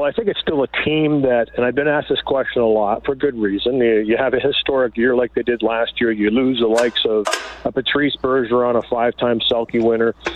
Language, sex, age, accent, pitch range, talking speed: English, male, 40-59, American, 115-140 Hz, 245 wpm